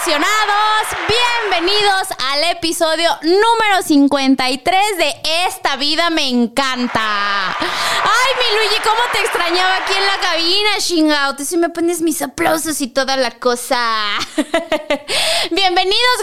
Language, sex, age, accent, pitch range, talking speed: Spanish, female, 20-39, Mexican, 265-385 Hz, 115 wpm